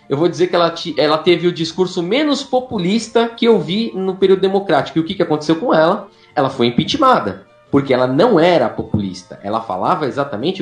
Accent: Brazilian